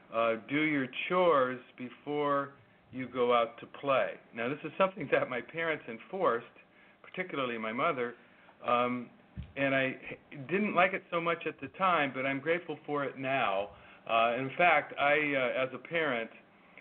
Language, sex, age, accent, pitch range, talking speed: English, male, 50-69, American, 120-150 Hz, 165 wpm